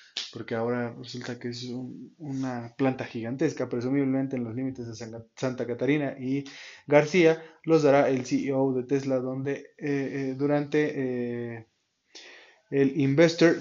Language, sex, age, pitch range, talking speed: Spanish, male, 20-39, 125-145 Hz, 130 wpm